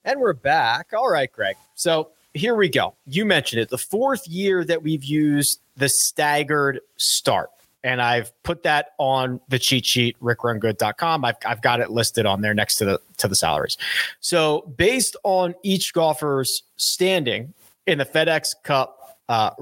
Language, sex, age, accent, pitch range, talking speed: English, male, 30-49, American, 130-200 Hz, 170 wpm